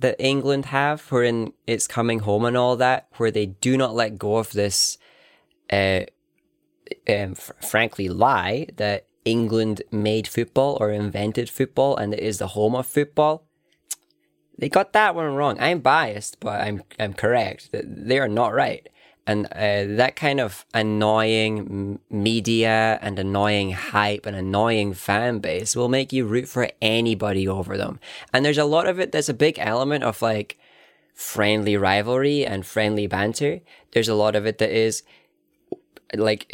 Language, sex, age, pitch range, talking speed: English, male, 20-39, 105-130 Hz, 165 wpm